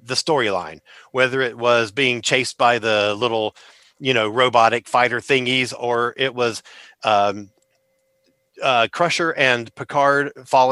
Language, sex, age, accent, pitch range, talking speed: English, male, 40-59, American, 115-140 Hz, 135 wpm